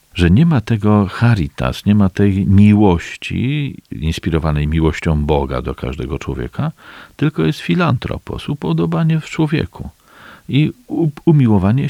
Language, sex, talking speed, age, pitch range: Polish, male, 120 wpm, 50-69, 80-130 Hz